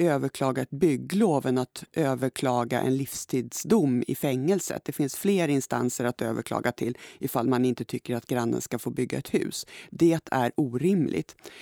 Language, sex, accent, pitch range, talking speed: Swedish, female, native, 125-175 Hz, 155 wpm